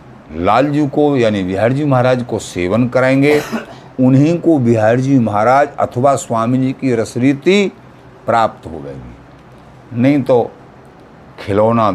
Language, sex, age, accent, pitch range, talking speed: Hindi, male, 50-69, native, 90-130 Hz, 130 wpm